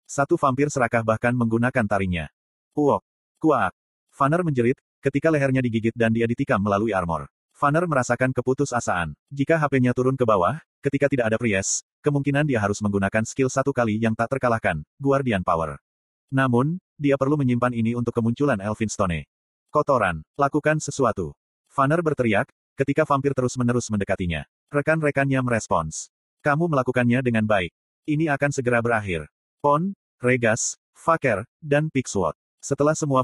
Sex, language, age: male, Indonesian, 30-49